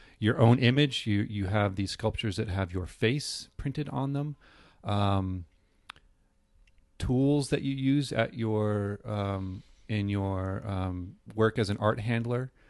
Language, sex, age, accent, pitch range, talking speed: English, male, 30-49, American, 95-120 Hz, 150 wpm